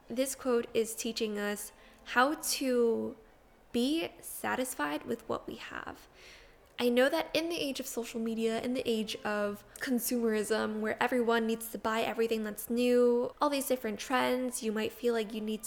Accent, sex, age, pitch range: American, female, 10-29, 205-245 Hz